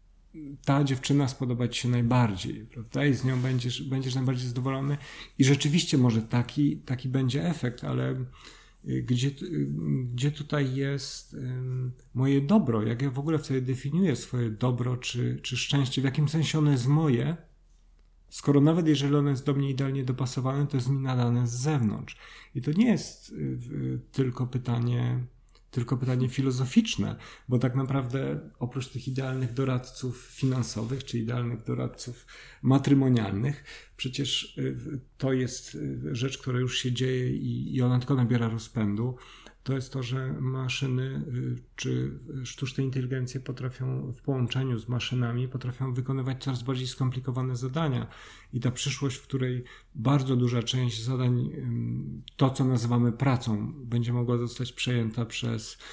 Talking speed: 140 wpm